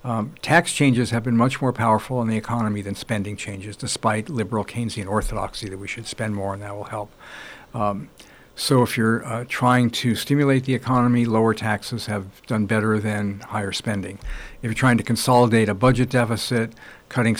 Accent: American